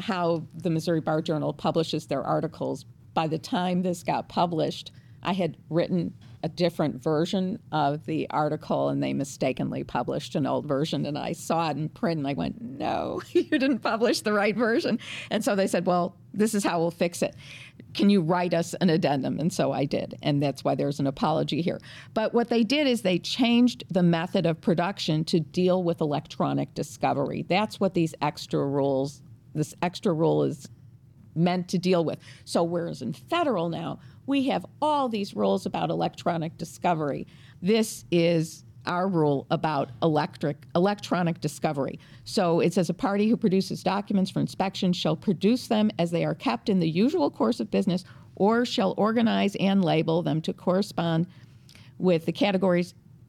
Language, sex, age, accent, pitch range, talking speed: English, female, 50-69, American, 145-190 Hz, 180 wpm